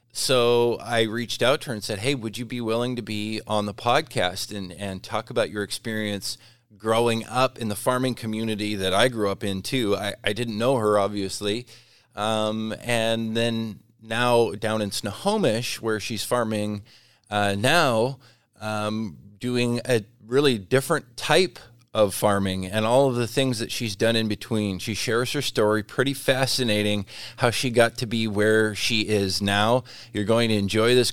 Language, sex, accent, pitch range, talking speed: English, male, American, 105-120 Hz, 175 wpm